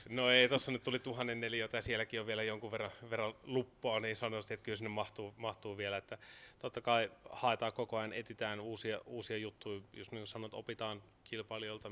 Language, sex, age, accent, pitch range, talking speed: Finnish, male, 20-39, native, 100-115 Hz, 195 wpm